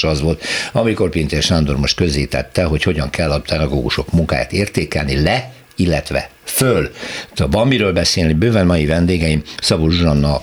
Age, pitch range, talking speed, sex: 60-79, 75-95 Hz, 150 wpm, male